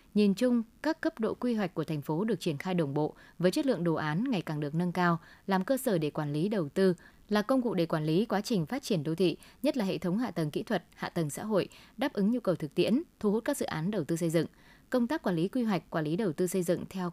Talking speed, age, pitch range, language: 300 wpm, 20-39, 170-215 Hz, Vietnamese